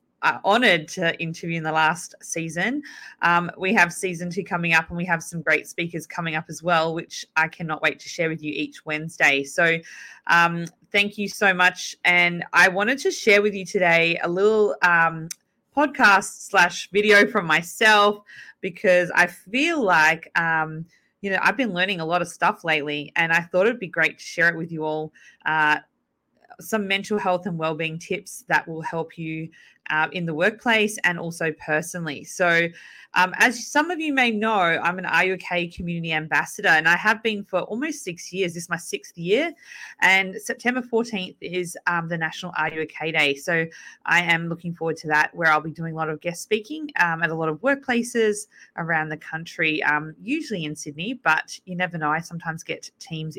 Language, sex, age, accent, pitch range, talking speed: English, female, 20-39, Australian, 160-200 Hz, 195 wpm